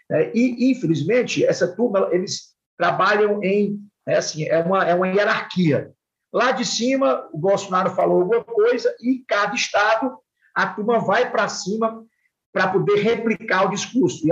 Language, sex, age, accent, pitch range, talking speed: Portuguese, male, 50-69, Brazilian, 175-230 Hz, 160 wpm